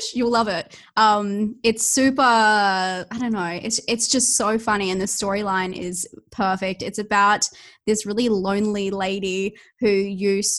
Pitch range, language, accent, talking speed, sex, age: 195-235 Hz, English, Australian, 155 wpm, female, 20-39